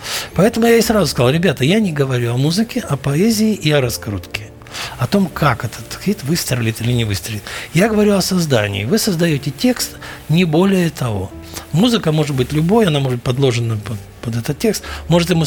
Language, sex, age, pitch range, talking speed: Russian, male, 60-79, 115-165 Hz, 190 wpm